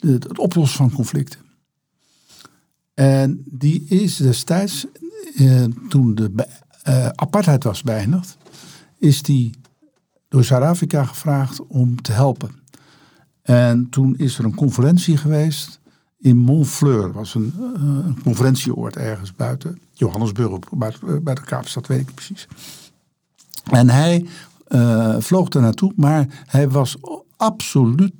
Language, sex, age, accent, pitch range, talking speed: Dutch, male, 60-79, Dutch, 125-155 Hz, 125 wpm